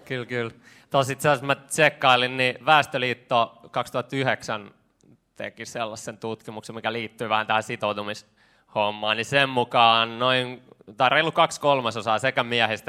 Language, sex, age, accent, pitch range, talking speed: Finnish, male, 20-39, native, 110-130 Hz, 120 wpm